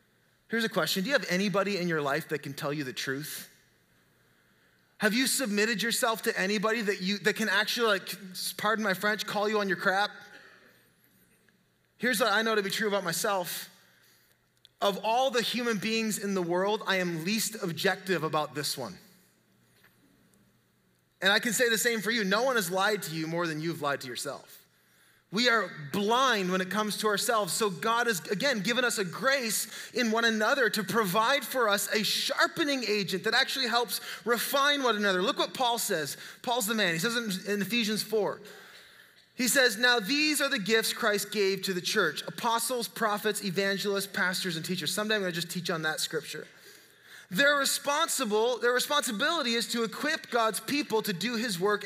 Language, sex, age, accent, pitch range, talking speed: English, male, 20-39, American, 185-235 Hz, 190 wpm